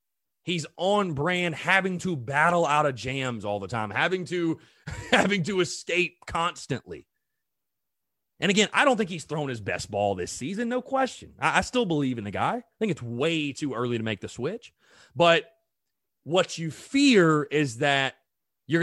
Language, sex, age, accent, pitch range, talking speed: English, male, 30-49, American, 125-190 Hz, 180 wpm